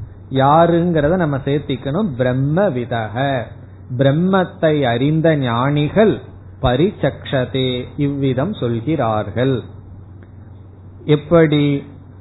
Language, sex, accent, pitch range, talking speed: Tamil, male, native, 120-160 Hz, 60 wpm